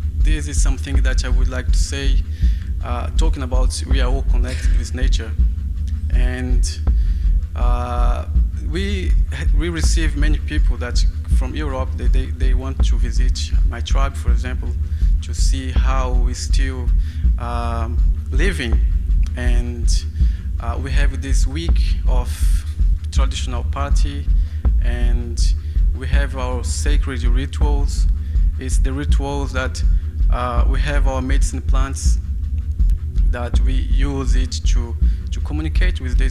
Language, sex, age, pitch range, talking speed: English, male, 20-39, 70-80 Hz, 130 wpm